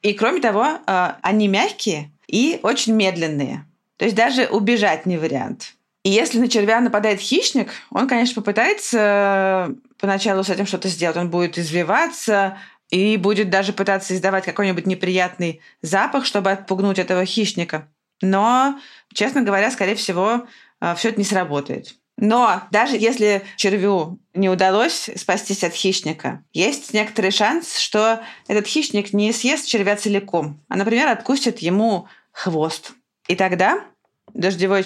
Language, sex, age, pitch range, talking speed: Russian, female, 20-39, 185-225 Hz, 135 wpm